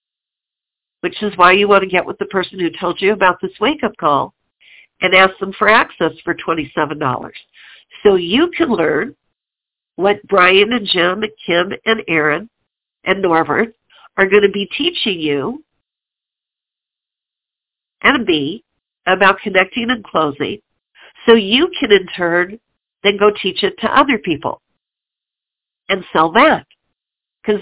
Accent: American